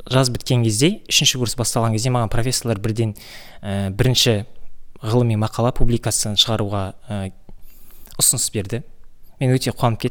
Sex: male